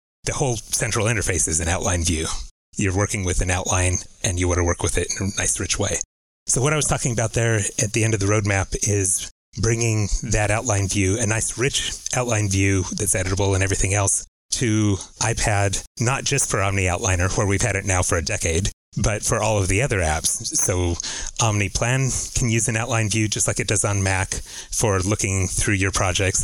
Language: English